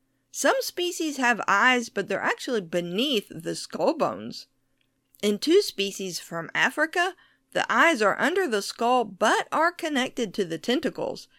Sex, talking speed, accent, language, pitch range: female, 150 wpm, American, English, 185-285 Hz